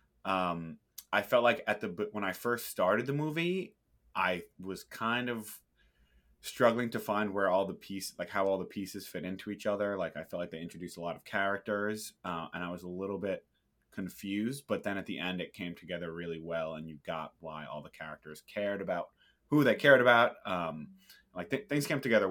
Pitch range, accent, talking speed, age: 85-105 Hz, American, 210 wpm, 30-49